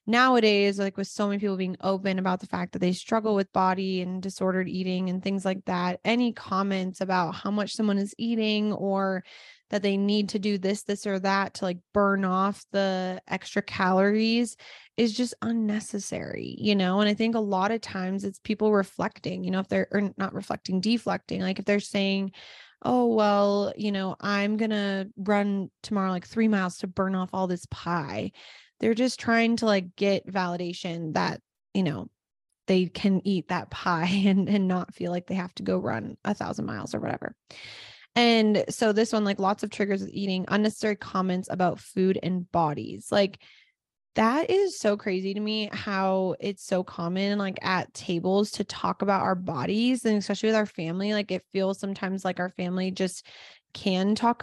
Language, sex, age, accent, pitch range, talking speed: English, female, 20-39, American, 185-210 Hz, 190 wpm